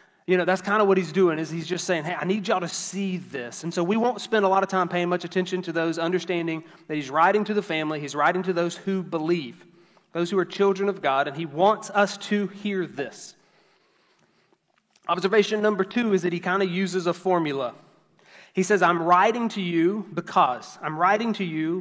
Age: 30-49